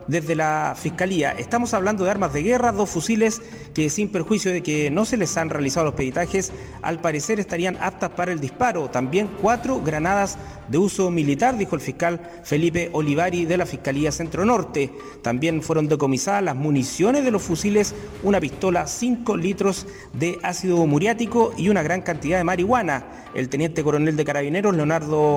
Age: 40-59